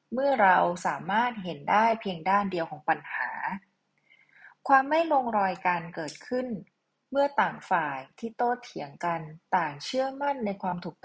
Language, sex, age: Thai, female, 20-39